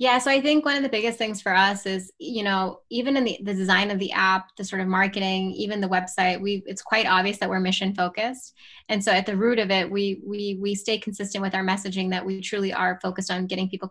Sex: female